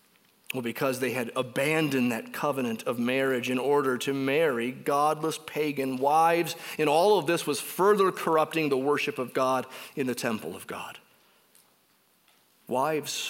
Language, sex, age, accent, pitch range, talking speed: English, male, 40-59, American, 130-170 Hz, 150 wpm